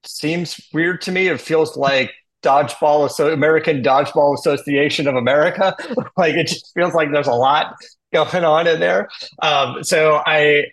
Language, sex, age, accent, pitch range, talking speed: English, male, 30-49, American, 110-155 Hz, 155 wpm